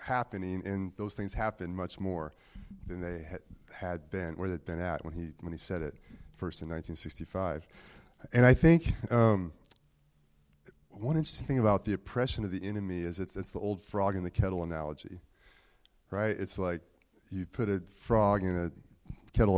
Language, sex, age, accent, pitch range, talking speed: English, male, 30-49, American, 85-110 Hz, 180 wpm